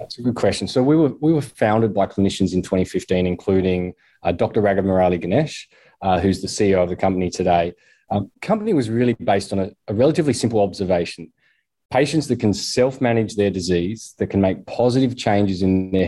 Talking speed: 195 wpm